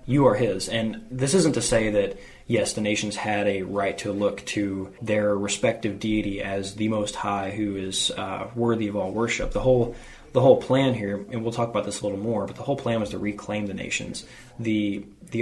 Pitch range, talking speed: 100-115 Hz, 220 wpm